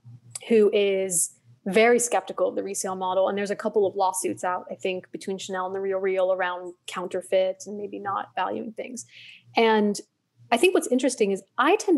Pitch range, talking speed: 190-235 Hz, 190 wpm